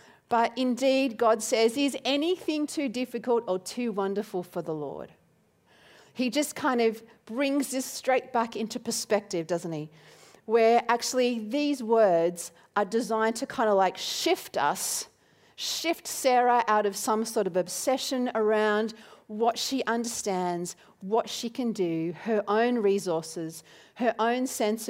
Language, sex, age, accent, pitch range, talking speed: English, female, 40-59, Australian, 195-250 Hz, 145 wpm